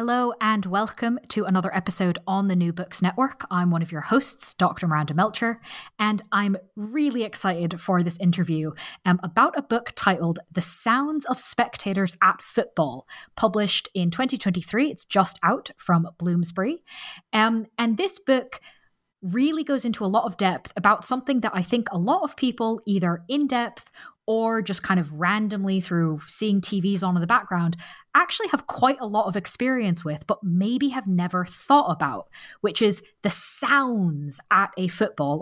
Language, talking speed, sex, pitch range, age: English, 170 wpm, female, 175-230 Hz, 20-39